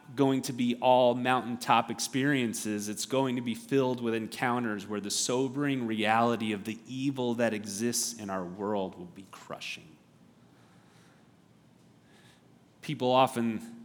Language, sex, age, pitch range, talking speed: English, male, 30-49, 110-135 Hz, 130 wpm